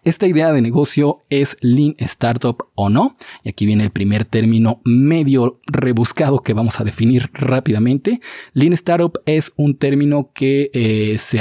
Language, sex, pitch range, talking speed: Spanish, male, 115-145 Hz, 160 wpm